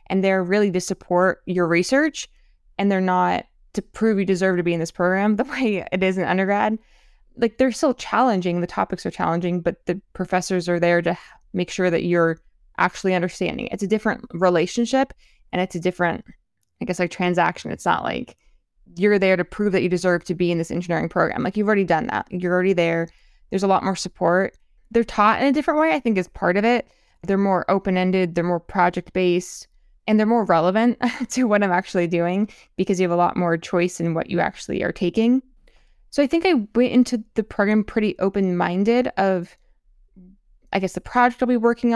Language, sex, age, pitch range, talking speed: English, female, 20-39, 180-220 Hz, 205 wpm